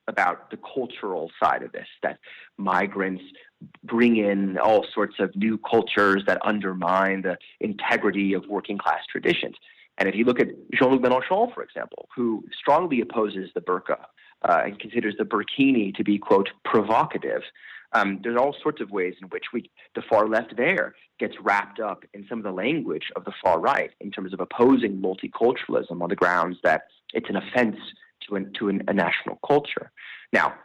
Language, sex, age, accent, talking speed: English, male, 30-49, American, 175 wpm